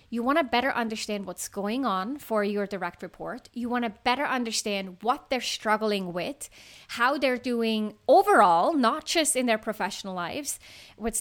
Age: 30-49